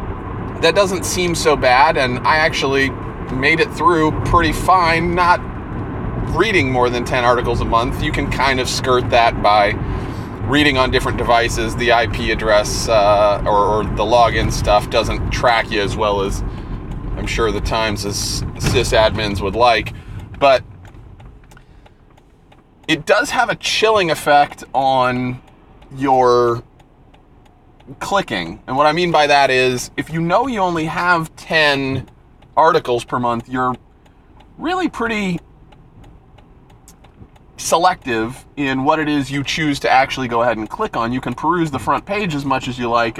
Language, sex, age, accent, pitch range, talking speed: English, male, 30-49, American, 110-145 Hz, 155 wpm